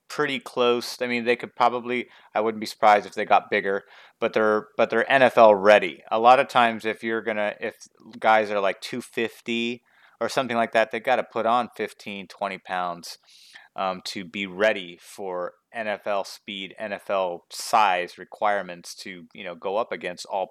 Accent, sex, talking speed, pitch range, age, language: American, male, 185 wpm, 100-120 Hz, 30-49, English